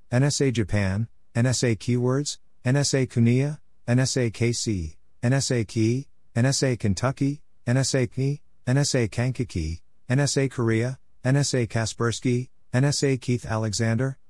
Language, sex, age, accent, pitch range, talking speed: English, male, 50-69, American, 110-130 Hz, 95 wpm